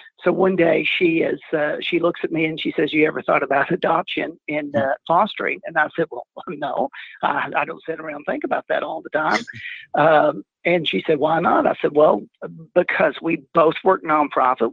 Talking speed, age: 210 wpm, 50-69